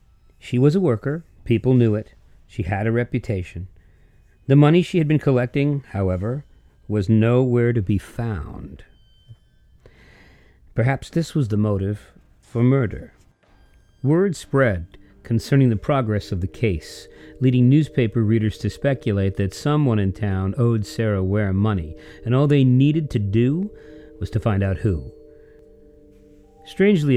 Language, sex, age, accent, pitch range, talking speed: English, male, 50-69, American, 100-140 Hz, 140 wpm